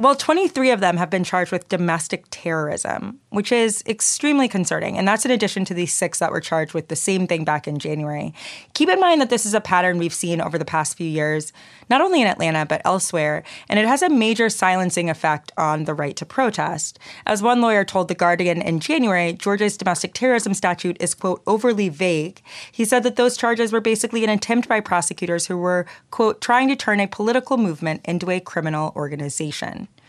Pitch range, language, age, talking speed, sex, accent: 170-225 Hz, English, 20-39, 205 wpm, female, American